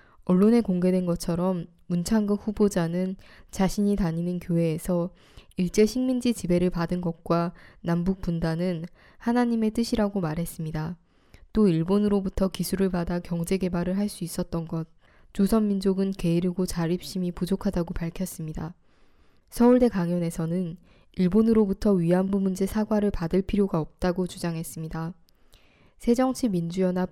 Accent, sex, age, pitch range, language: native, female, 20-39, 170-200 Hz, Korean